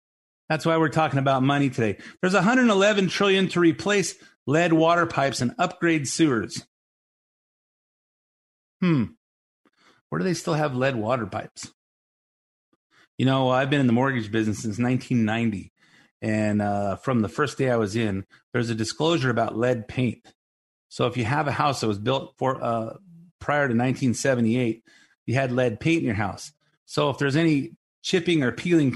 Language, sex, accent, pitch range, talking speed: English, male, American, 120-160 Hz, 165 wpm